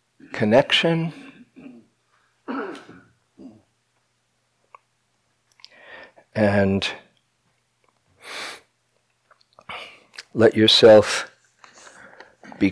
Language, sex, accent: English, male, American